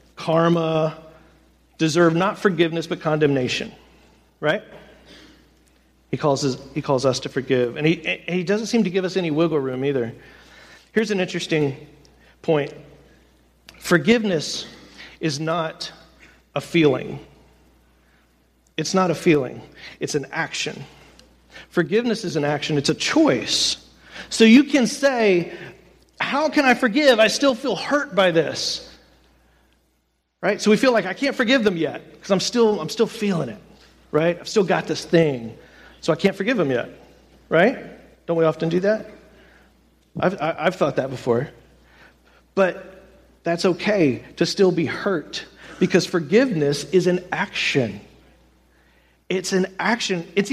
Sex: male